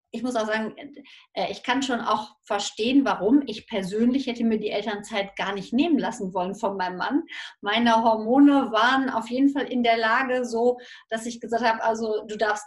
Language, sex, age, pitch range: German, female, 30-49, 205-245 Hz